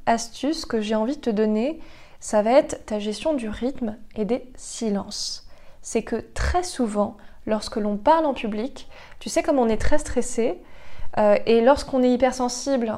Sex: female